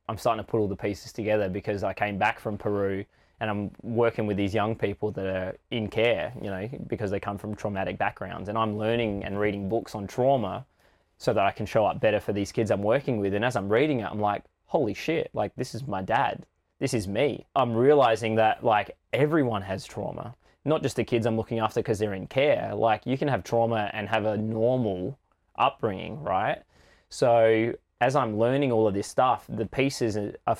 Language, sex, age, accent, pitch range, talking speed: English, male, 20-39, Australian, 100-115 Hz, 220 wpm